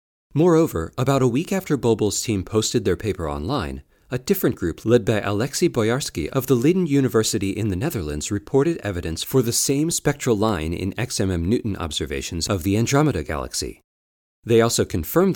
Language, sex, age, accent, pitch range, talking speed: English, male, 40-59, American, 90-140 Hz, 165 wpm